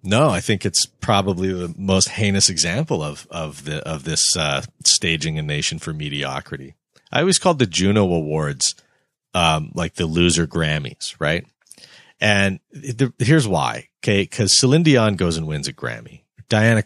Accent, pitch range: American, 80-110 Hz